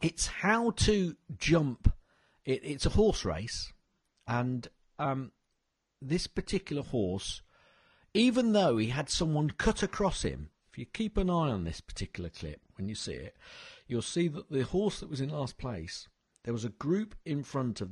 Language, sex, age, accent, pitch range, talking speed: English, male, 50-69, British, 105-175 Hz, 170 wpm